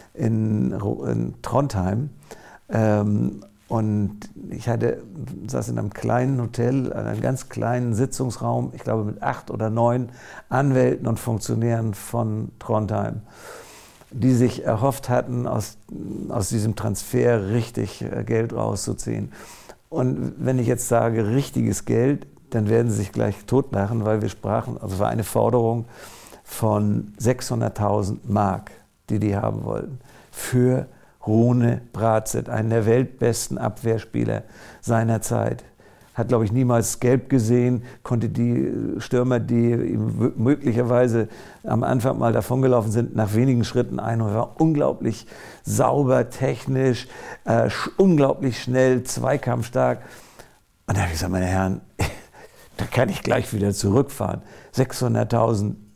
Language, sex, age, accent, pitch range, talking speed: German, male, 50-69, German, 110-125 Hz, 125 wpm